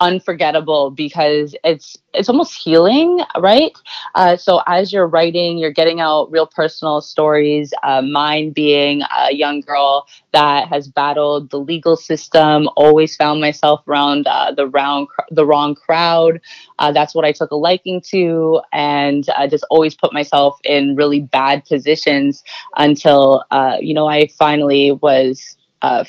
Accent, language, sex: American, English, female